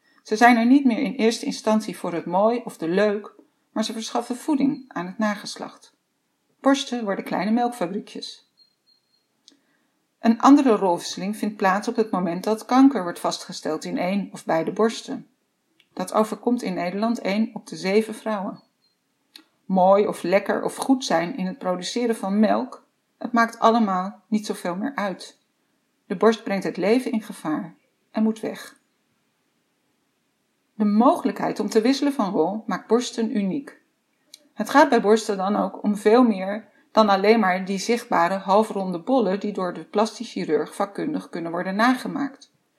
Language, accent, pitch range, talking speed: Dutch, Dutch, 195-245 Hz, 160 wpm